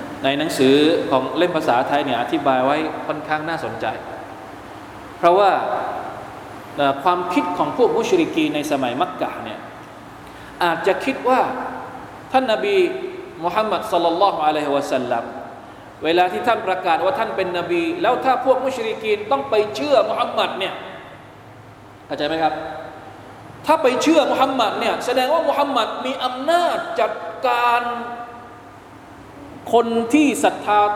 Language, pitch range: Thai, 180-305 Hz